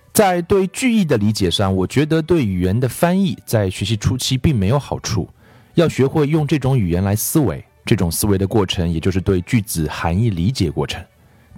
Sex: male